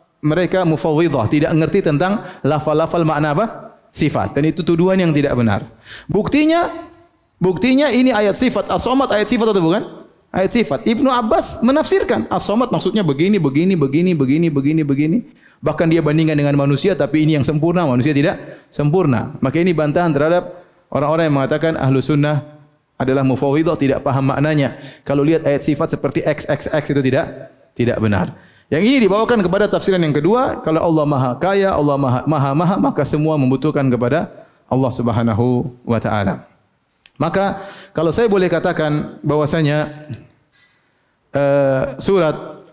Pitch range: 140-200 Hz